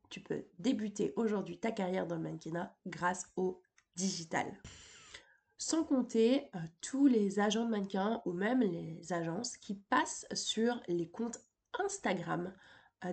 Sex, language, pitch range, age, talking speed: female, French, 185-240 Hz, 20-39, 140 wpm